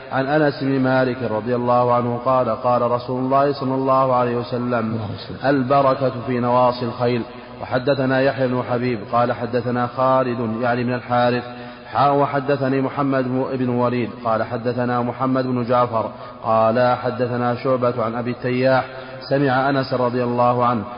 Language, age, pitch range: Arabic, 30-49, 120-130 Hz